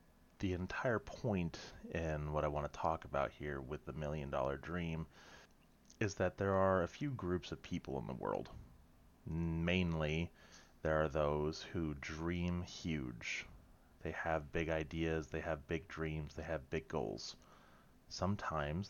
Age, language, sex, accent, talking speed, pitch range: 30-49, English, male, American, 155 wpm, 75-90 Hz